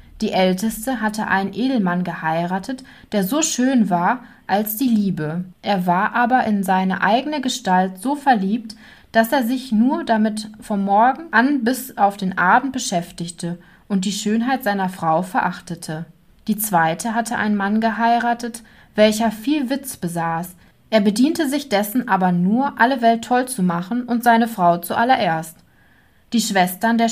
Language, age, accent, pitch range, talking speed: German, 20-39, German, 185-245 Hz, 155 wpm